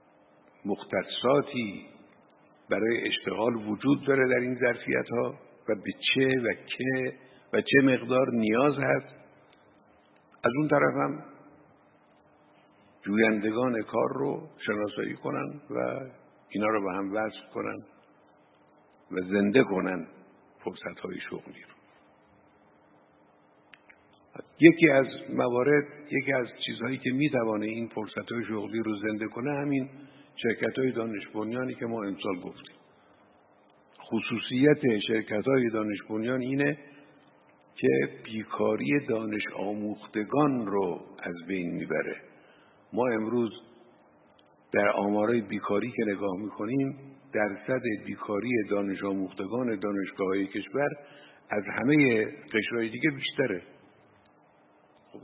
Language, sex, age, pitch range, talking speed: Persian, male, 60-79, 100-130 Hz, 105 wpm